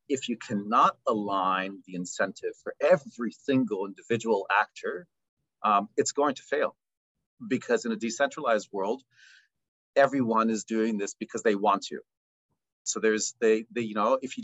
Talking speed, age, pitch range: 155 wpm, 40-59, 105-140 Hz